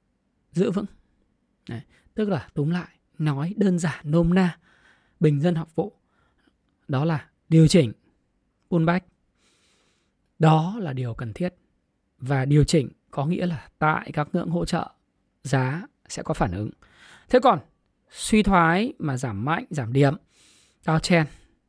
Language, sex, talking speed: Vietnamese, male, 145 wpm